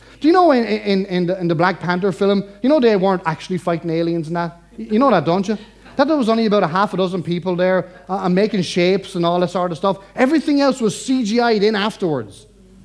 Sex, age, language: male, 30-49, English